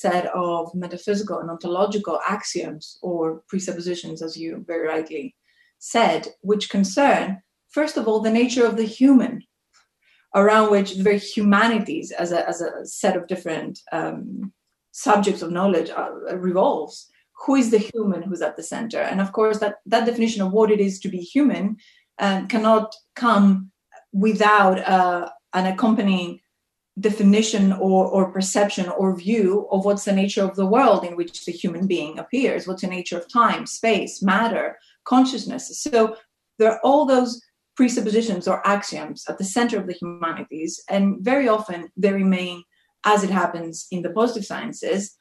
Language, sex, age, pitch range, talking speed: English, female, 30-49, 180-225 Hz, 160 wpm